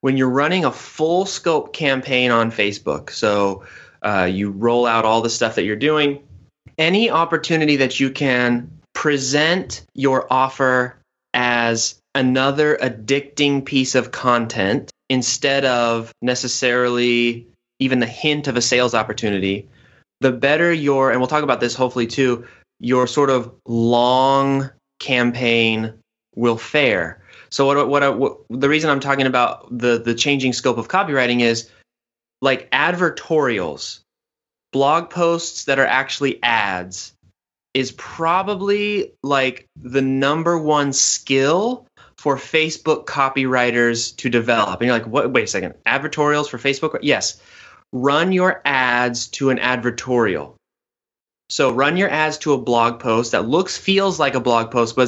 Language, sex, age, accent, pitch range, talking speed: English, male, 20-39, American, 120-140 Hz, 140 wpm